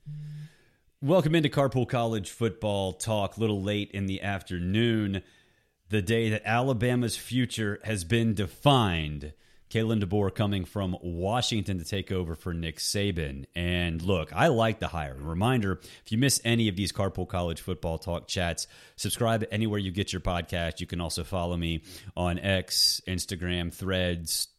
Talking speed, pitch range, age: 160 wpm, 90-115 Hz, 30-49